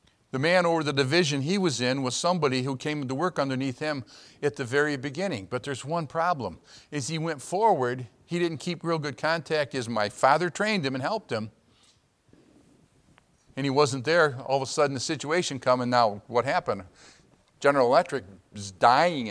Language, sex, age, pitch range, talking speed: English, male, 50-69, 130-165 Hz, 190 wpm